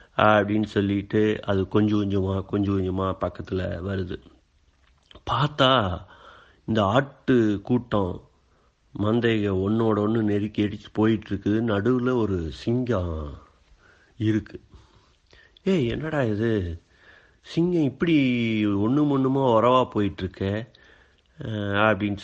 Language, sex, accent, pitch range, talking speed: Tamil, male, native, 100-125 Hz, 90 wpm